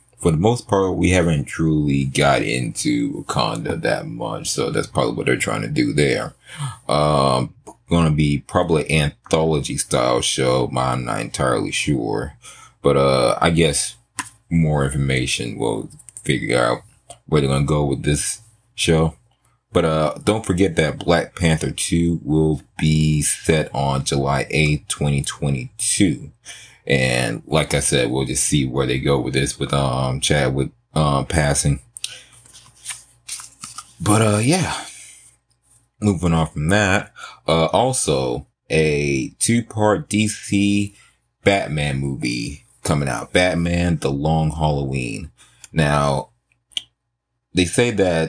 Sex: male